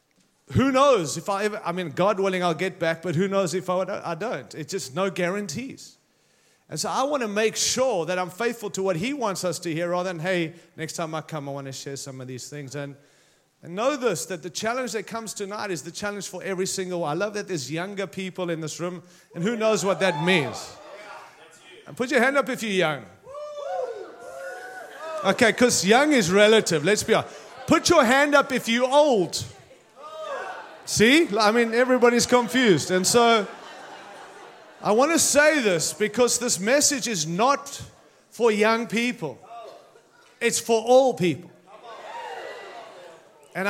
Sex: male